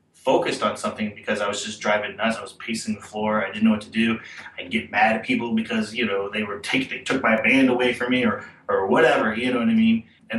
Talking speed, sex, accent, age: 270 wpm, male, American, 30-49